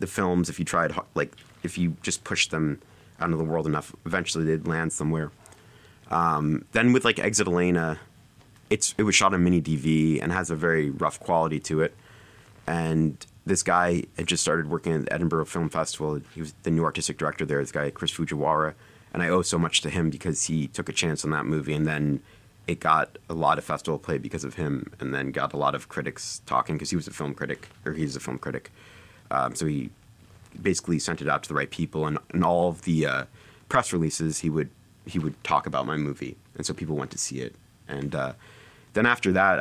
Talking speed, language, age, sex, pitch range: 225 wpm, English, 30-49, male, 70-85 Hz